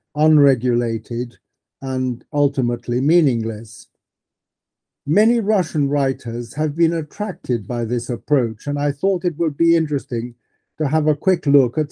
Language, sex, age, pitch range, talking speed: English, male, 50-69, 125-160 Hz, 130 wpm